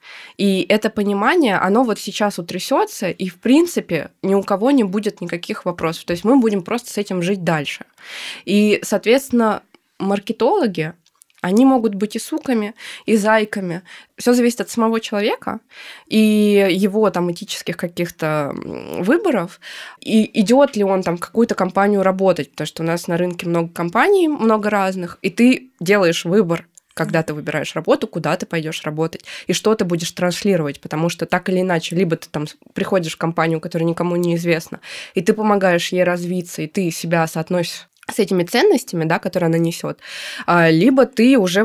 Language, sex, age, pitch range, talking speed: Russian, female, 20-39, 175-220 Hz, 165 wpm